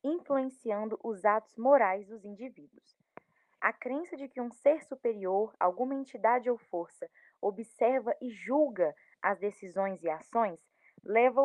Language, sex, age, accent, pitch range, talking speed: Portuguese, female, 10-29, Brazilian, 200-270 Hz, 130 wpm